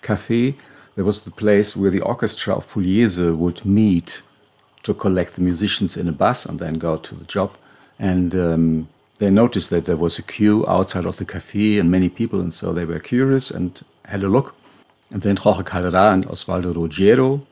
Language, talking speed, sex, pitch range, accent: German, 195 wpm, male, 85-105 Hz, German